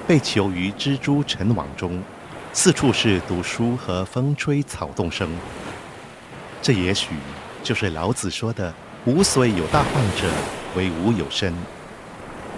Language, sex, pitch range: Chinese, male, 95-140 Hz